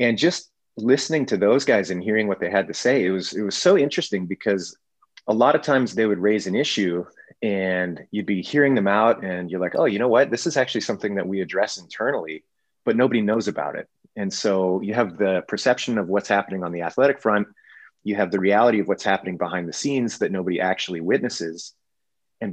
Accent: American